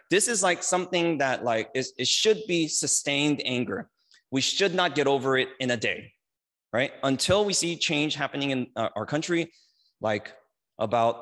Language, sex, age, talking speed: English, male, 20-39, 165 wpm